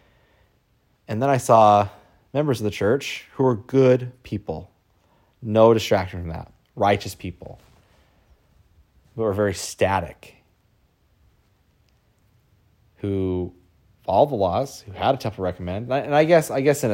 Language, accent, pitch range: English, American, 85-110 Hz